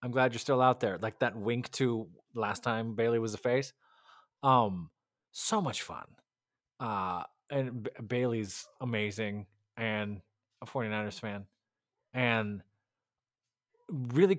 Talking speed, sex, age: 125 wpm, male, 20-39